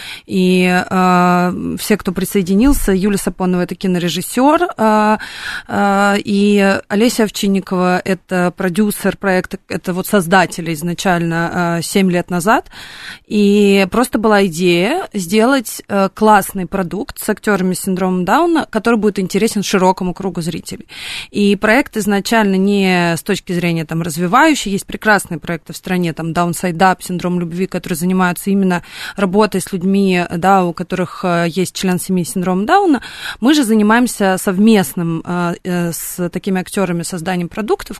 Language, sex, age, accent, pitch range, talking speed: Russian, female, 20-39, native, 180-210 Hz, 135 wpm